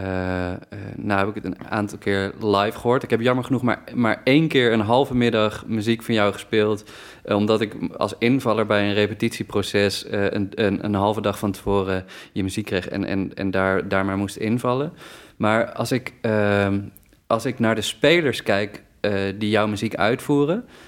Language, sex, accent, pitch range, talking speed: Dutch, male, Dutch, 105-120 Hz, 180 wpm